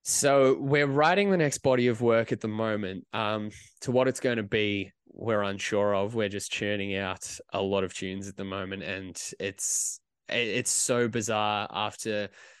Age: 20-39